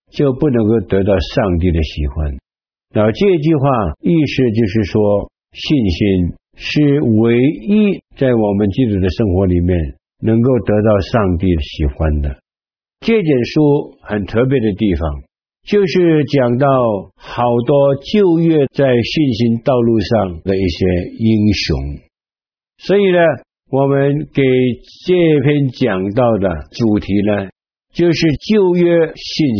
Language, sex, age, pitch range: Chinese, male, 60-79, 100-150 Hz